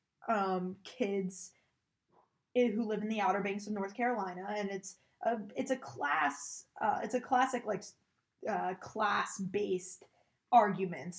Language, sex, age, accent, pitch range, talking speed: English, female, 20-39, American, 190-230 Hz, 135 wpm